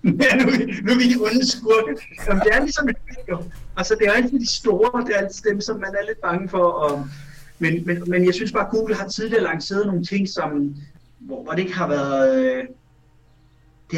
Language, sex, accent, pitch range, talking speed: Danish, male, native, 145-200 Hz, 220 wpm